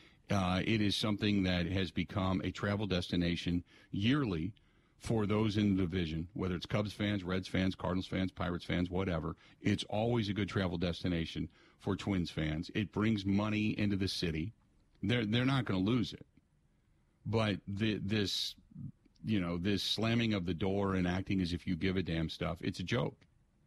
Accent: American